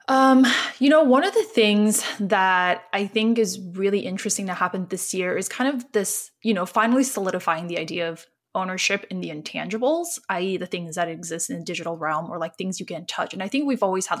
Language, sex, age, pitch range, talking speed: English, female, 20-39, 175-220 Hz, 225 wpm